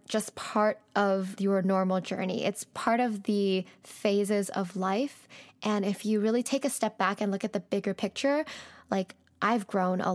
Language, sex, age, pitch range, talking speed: English, female, 10-29, 195-230 Hz, 185 wpm